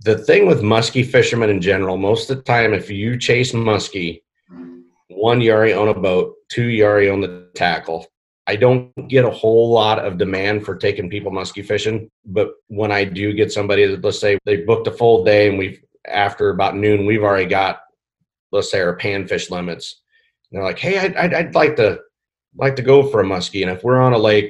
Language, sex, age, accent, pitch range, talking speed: English, male, 40-59, American, 100-135 Hz, 215 wpm